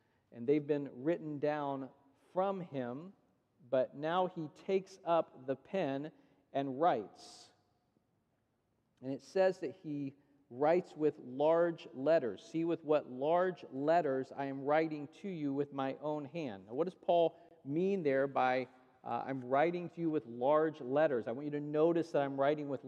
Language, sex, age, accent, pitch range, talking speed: English, male, 40-59, American, 140-175 Hz, 165 wpm